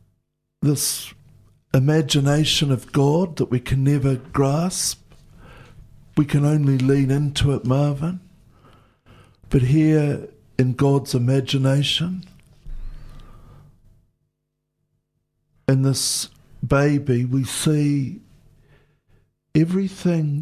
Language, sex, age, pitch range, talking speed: English, male, 60-79, 130-150 Hz, 80 wpm